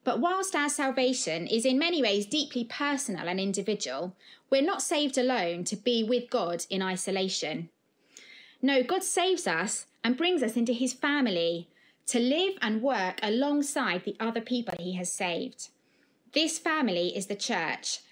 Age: 20-39